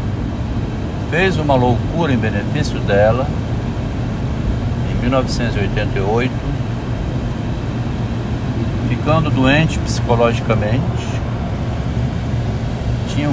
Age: 60-79